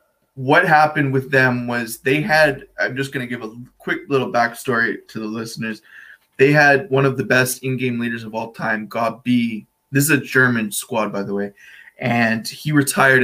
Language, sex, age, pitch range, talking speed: English, male, 20-39, 115-135 Hz, 190 wpm